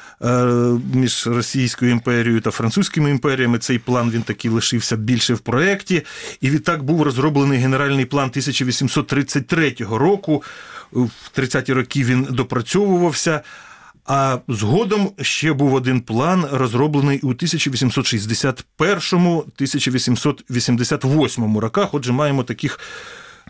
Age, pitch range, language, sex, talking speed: 30-49, 120-145 Hz, Ukrainian, male, 100 wpm